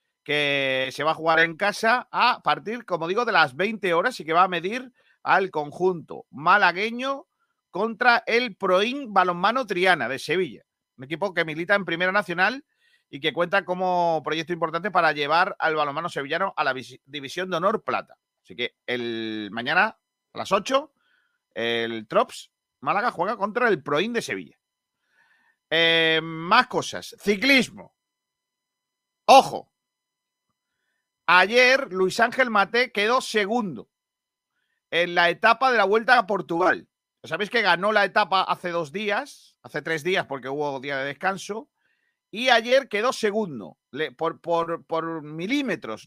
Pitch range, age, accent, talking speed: 160-225 Hz, 40-59, Spanish, 145 wpm